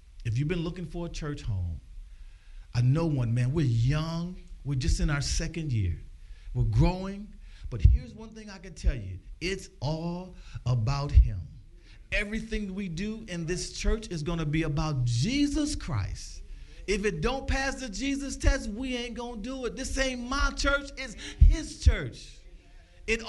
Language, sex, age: English, male, 50-69